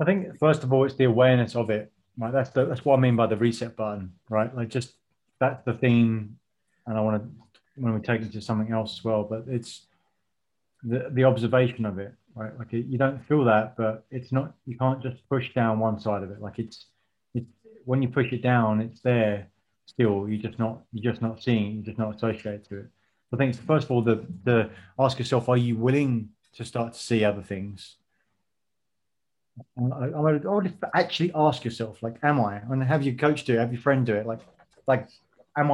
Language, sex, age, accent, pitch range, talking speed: English, male, 30-49, British, 110-135 Hz, 220 wpm